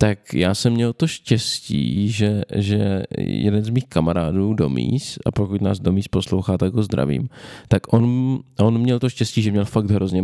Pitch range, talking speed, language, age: 100-125 Hz, 180 wpm, Czech, 20-39